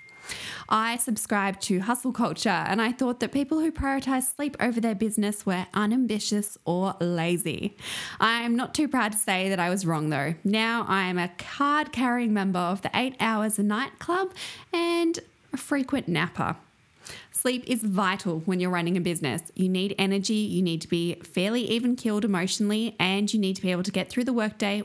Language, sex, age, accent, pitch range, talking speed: English, female, 20-39, Australian, 175-230 Hz, 190 wpm